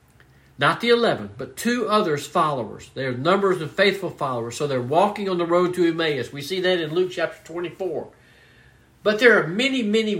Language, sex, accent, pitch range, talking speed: English, male, American, 140-195 Hz, 195 wpm